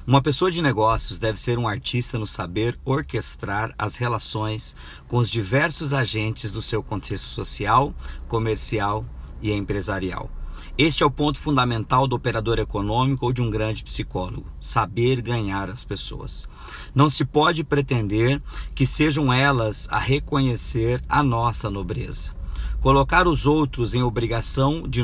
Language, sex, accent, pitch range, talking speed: Portuguese, male, Brazilian, 105-130 Hz, 140 wpm